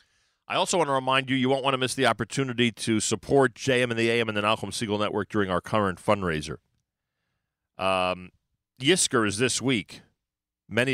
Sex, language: male, English